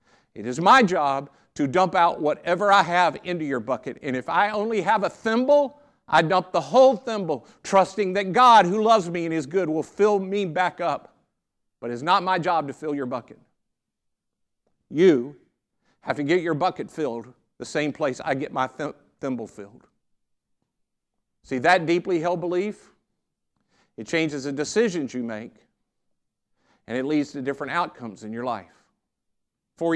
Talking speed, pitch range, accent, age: 170 wpm, 130-185 Hz, American, 50-69